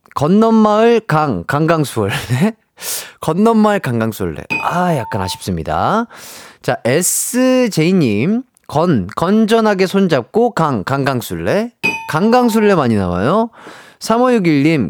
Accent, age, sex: native, 30-49, male